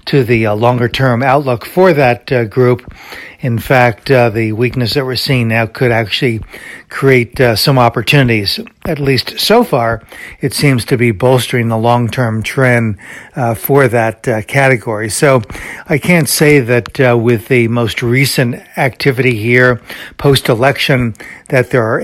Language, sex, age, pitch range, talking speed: English, male, 60-79, 120-140 Hz, 155 wpm